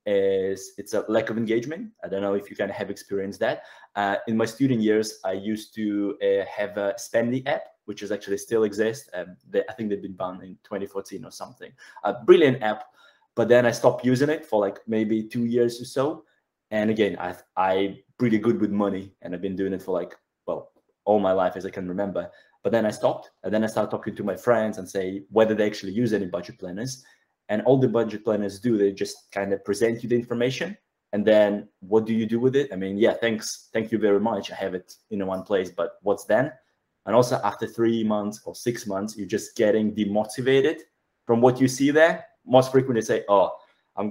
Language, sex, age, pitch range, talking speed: English, male, 20-39, 100-115 Hz, 225 wpm